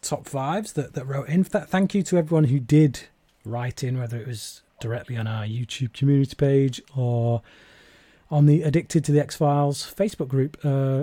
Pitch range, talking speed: 120-150 Hz, 190 wpm